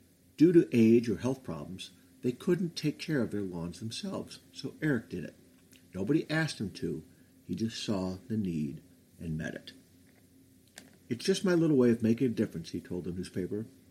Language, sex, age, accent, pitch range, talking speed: English, male, 50-69, American, 90-130 Hz, 185 wpm